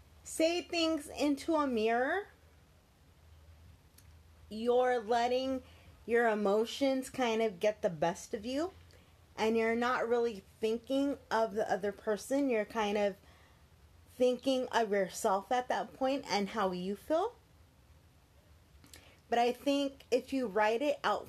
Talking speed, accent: 130 wpm, American